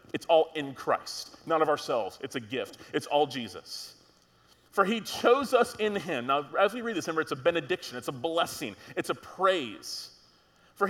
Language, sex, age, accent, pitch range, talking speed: English, male, 30-49, American, 165-230 Hz, 195 wpm